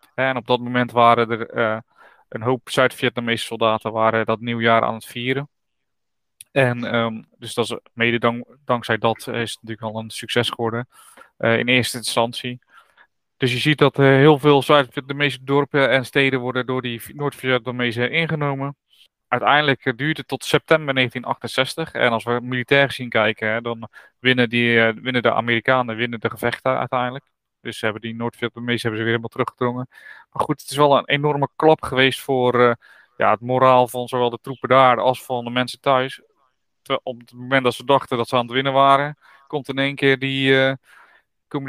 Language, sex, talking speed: Dutch, male, 190 wpm